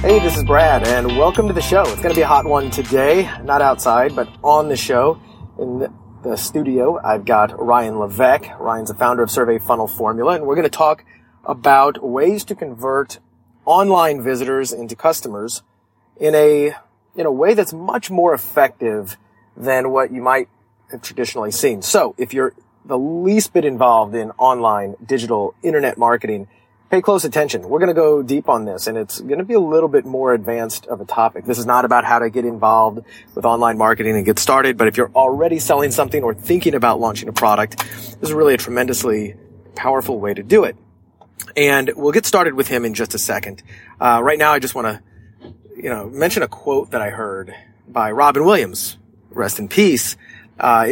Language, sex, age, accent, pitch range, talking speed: English, male, 30-49, American, 110-140 Hz, 195 wpm